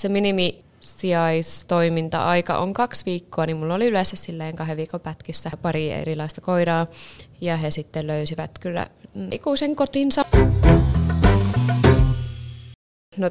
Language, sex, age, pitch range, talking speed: Finnish, female, 20-39, 165-190 Hz, 110 wpm